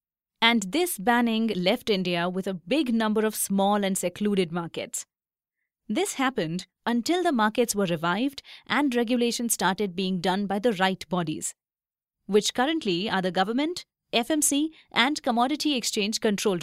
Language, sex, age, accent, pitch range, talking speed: English, female, 30-49, Indian, 195-265 Hz, 145 wpm